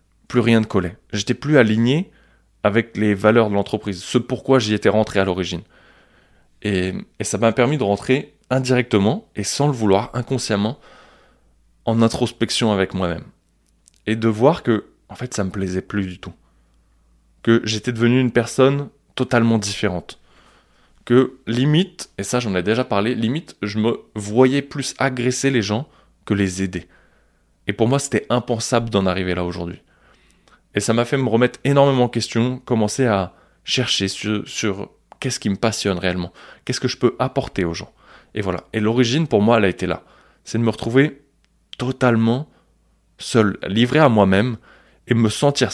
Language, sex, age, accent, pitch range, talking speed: French, male, 20-39, French, 100-125 Hz, 170 wpm